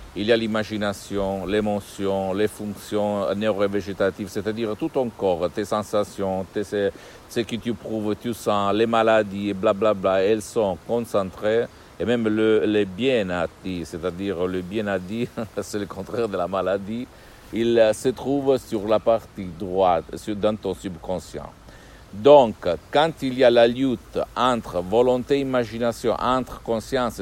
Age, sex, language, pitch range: 60-79, male, Italian, 100-120 Hz